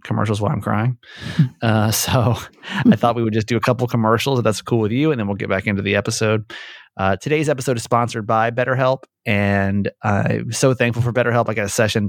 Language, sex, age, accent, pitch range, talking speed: English, male, 30-49, American, 100-120 Hz, 225 wpm